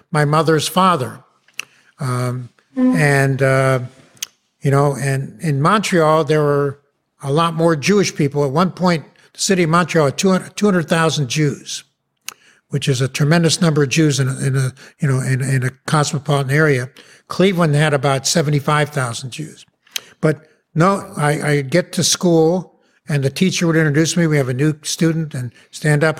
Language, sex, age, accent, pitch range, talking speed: English, male, 60-79, American, 140-170 Hz, 150 wpm